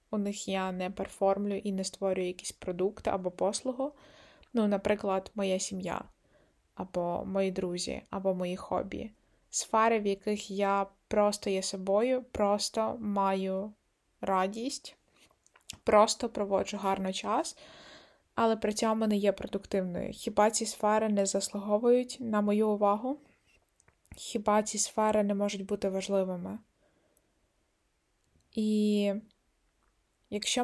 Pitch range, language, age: 195-225 Hz, Ukrainian, 20-39